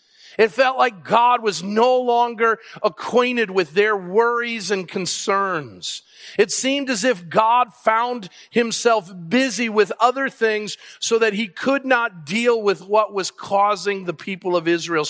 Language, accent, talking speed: English, American, 150 wpm